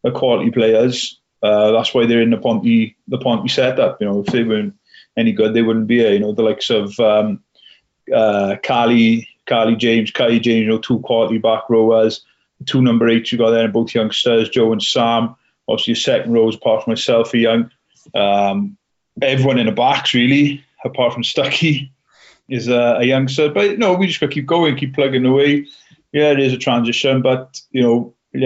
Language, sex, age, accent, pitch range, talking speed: English, male, 30-49, British, 115-130 Hz, 200 wpm